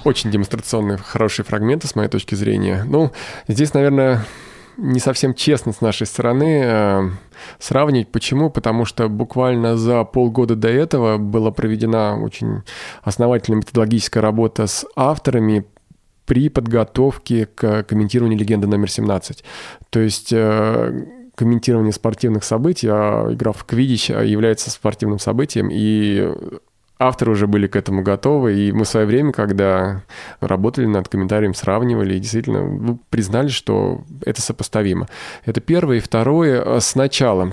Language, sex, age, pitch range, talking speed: Russian, male, 20-39, 105-125 Hz, 130 wpm